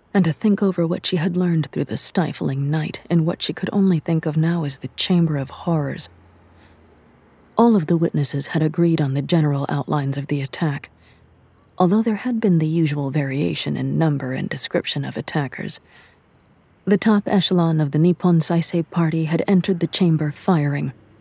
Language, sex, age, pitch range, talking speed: English, female, 40-59, 140-180 Hz, 180 wpm